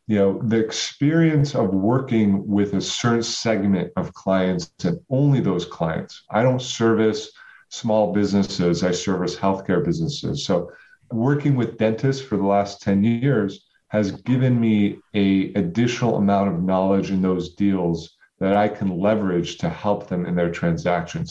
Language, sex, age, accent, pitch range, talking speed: English, male, 40-59, American, 95-115 Hz, 155 wpm